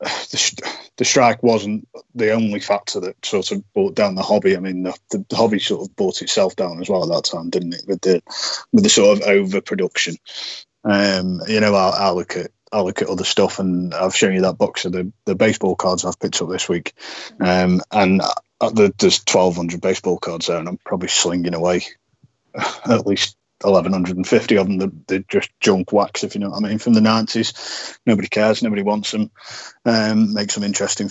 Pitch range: 95-120 Hz